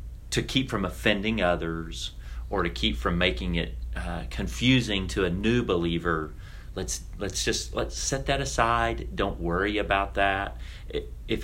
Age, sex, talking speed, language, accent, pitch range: 40-59, male, 155 wpm, English, American, 85-110 Hz